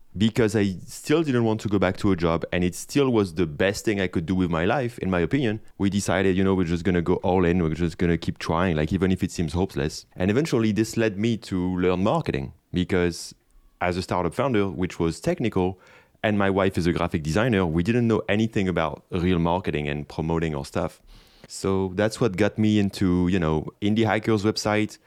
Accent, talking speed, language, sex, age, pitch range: French, 225 wpm, English, male, 30-49, 90-110 Hz